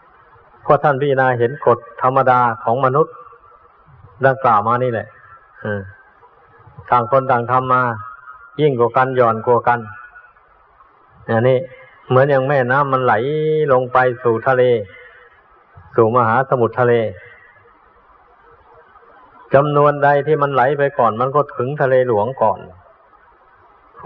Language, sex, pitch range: Thai, male, 120-135 Hz